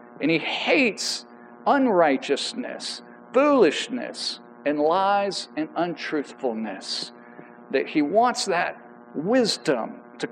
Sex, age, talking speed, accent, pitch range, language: male, 50-69, 85 wpm, American, 145-240 Hz, English